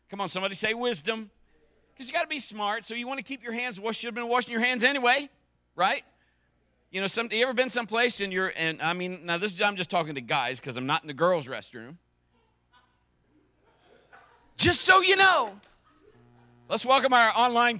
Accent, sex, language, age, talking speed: American, male, English, 50-69, 210 wpm